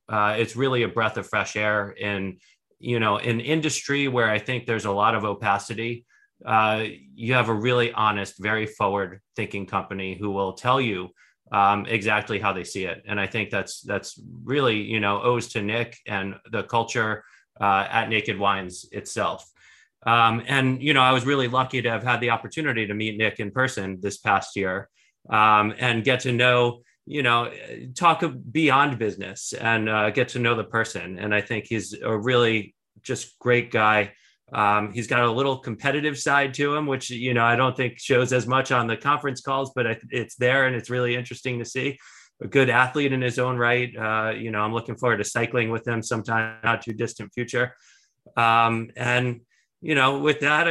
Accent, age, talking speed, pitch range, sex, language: American, 30-49, 195 wpm, 105-130 Hz, male, English